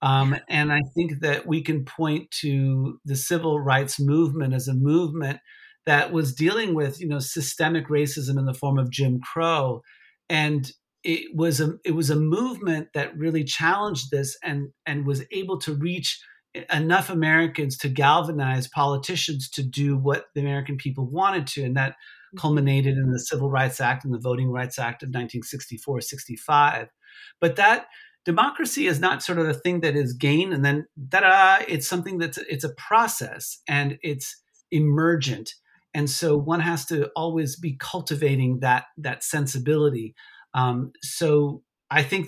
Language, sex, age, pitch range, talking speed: English, male, 50-69, 135-160 Hz, 165 wpm